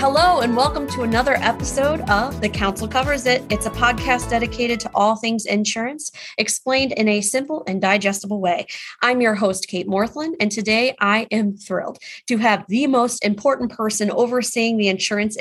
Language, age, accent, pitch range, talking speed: English, 30-49, American, 195-245 Hz, 175 wpm